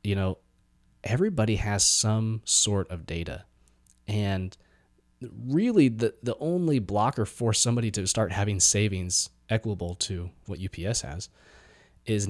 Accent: American